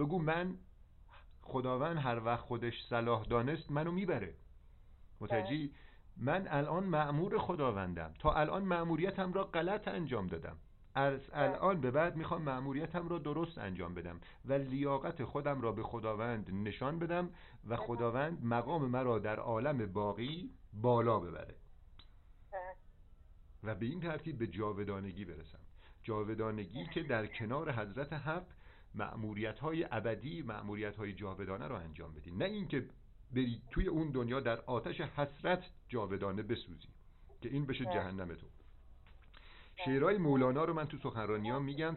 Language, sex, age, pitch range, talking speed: Persian, male, 50-69, 100-145 Hz, 135 wpm